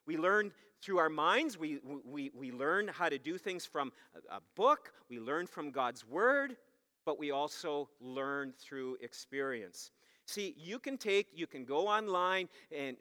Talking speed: 165 wpm